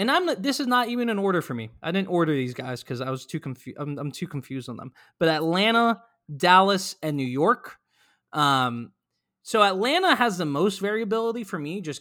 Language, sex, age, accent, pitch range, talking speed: English, male, 20-39, American, 135-185 Hz, 210 wpm